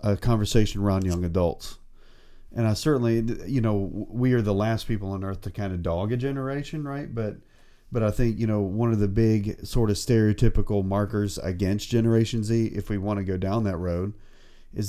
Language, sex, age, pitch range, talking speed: English, male, 40-59, 100-125 Hz, 200 wpm